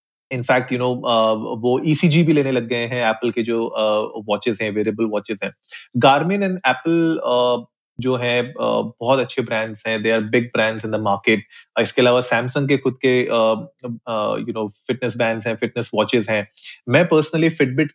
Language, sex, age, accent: Hindi, male, 30-49, native